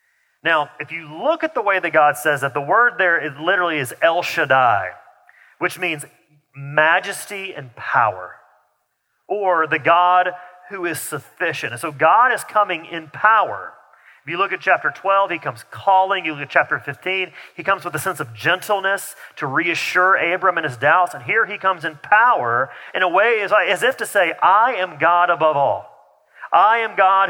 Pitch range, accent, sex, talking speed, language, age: 150-200 Hz, American, male, 185 wpm, English, 40-59